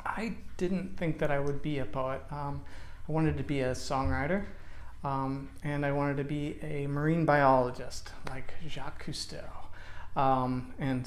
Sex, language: male, English